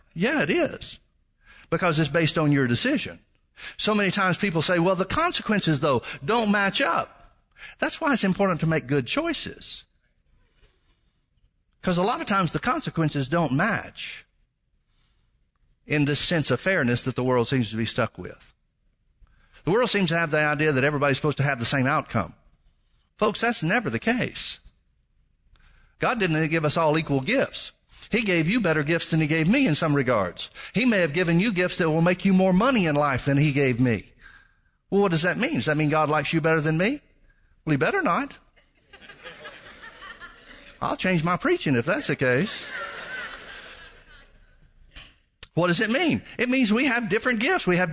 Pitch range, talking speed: 150-210 Hz, 185 wpm